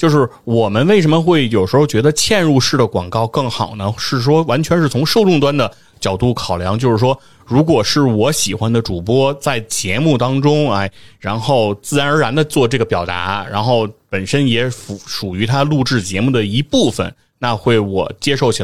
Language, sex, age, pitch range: Chinese, male, 30-49, 110-140 Hz